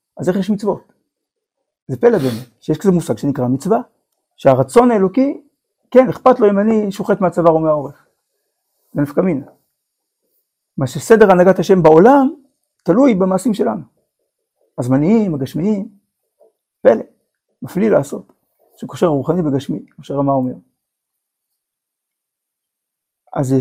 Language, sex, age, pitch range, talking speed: Hebrew, male, 50-69, 135-215 Hz, 115 wpm